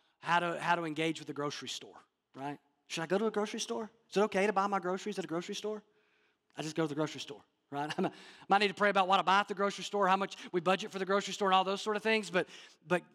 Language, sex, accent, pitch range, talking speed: English, male, American, 150-210 Hz, 295 wpm